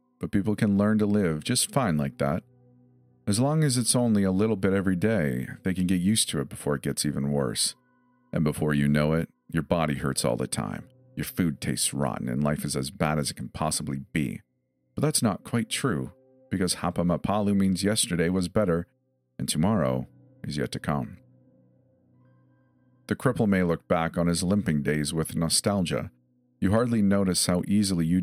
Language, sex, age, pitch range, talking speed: English, male, 40-59, 75-105 Hz, 195 wpm